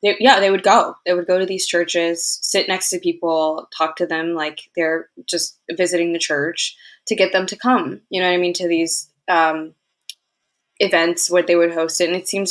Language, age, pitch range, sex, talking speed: English, 20-39, 165-190 Hz, female, 220 wpm